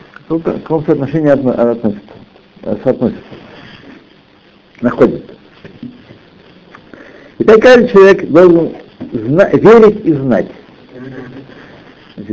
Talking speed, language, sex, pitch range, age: 70 wpm, Russian, male, 110-155 Hz, 60-79